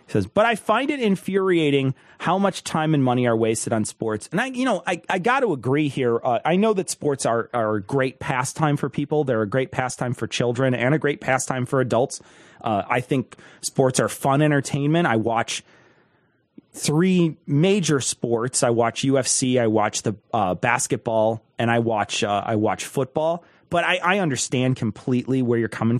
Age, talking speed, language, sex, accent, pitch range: 30-49, 195 wpm, English, male, American, 120-175 Hz